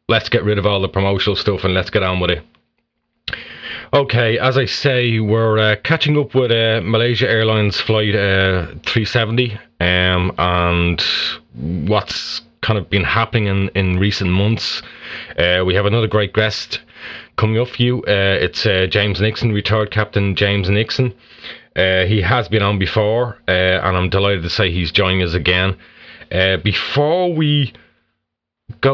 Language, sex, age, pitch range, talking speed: English, male, 30-49, 95-115 Hz, 165 wpm